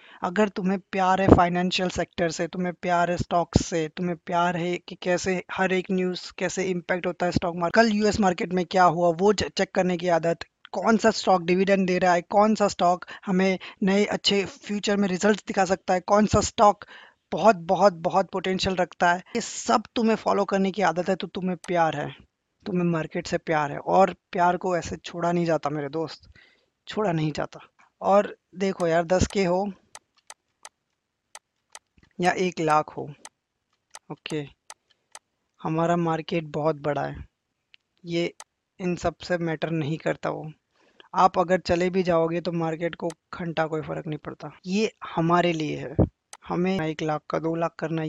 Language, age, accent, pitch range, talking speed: Hindi, 20-39, native, 170-190 Hz, 175 wpm